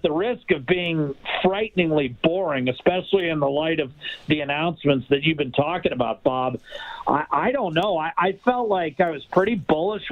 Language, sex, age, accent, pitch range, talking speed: English, male, 50-69, American, 150-185 Hz, 185 wpm